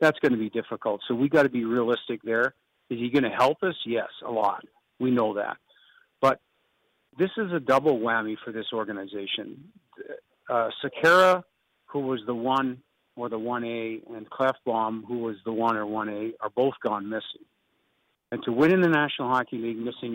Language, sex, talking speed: English, male, 180 wpm